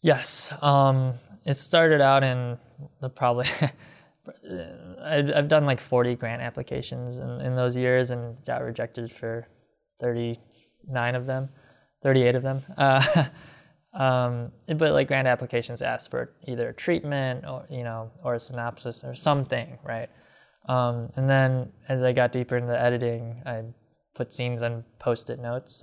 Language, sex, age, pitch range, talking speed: English, male, 20-39, 120-135 Hz, 155 wpm